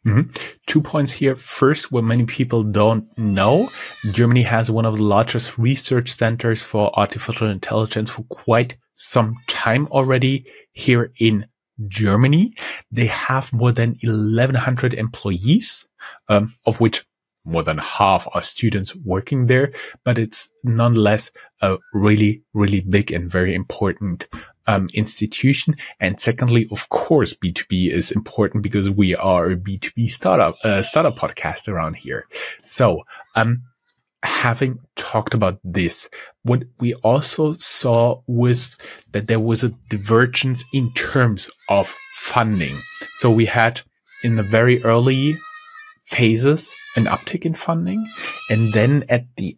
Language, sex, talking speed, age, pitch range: English, male, 135 wpm, 30-49, 105-130 Hz